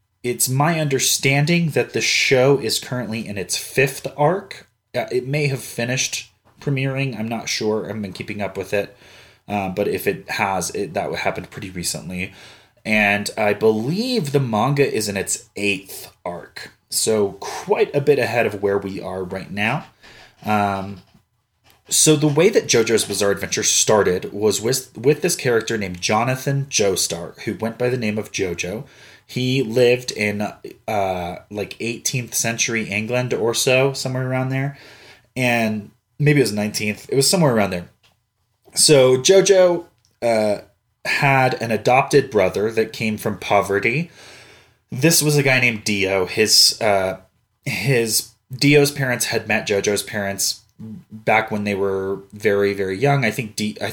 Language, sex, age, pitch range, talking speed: English, male, 30-49, 100-130 Hz, 155 wpm